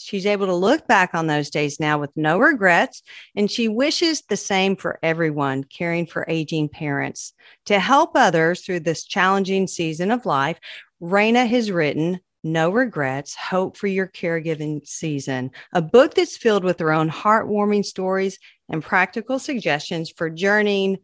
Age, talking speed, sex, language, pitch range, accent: 40-59, 160 wpm, female, English, 160-225 Hz, American